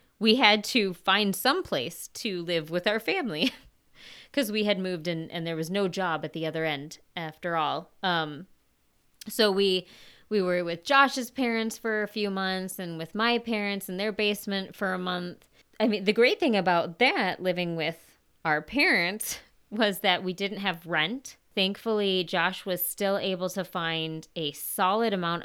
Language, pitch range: English, 170-210 Hz